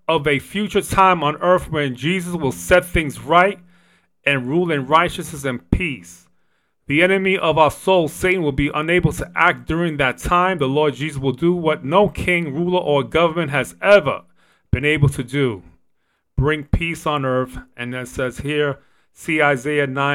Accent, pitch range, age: American, 135-165 Hz, 30-49